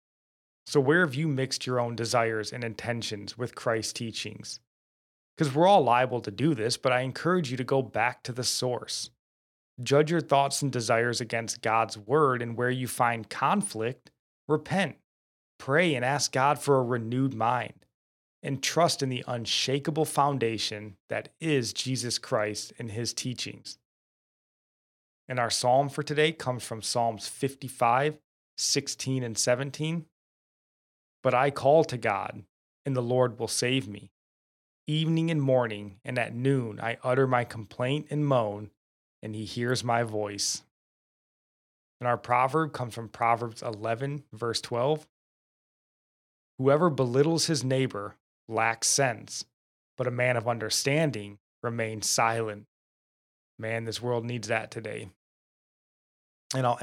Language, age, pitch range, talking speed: English, 20-39, 110-140 Hz, 145 wpm